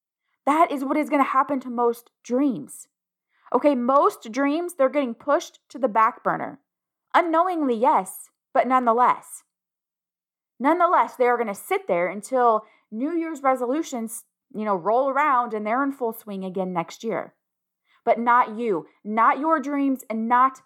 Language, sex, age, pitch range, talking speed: English, female, 20-39, 230-285 Hz, 160 wpm